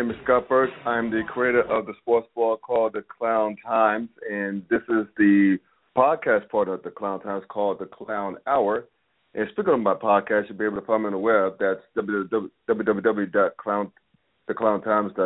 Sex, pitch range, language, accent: male, 100-115 Hz, English, American